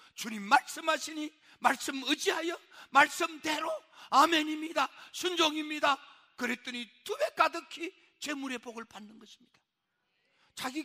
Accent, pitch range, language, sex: native, 270-360 Hz, Korean, male